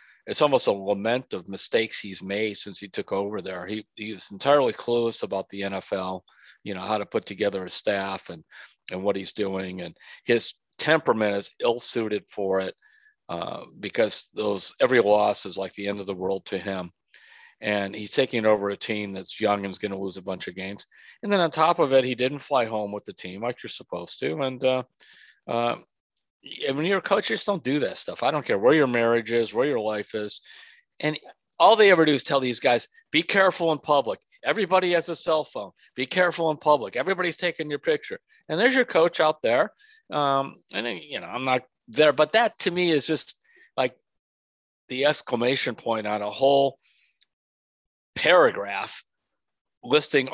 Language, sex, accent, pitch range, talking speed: English, male, American, 100-150 Hz, 200 wpm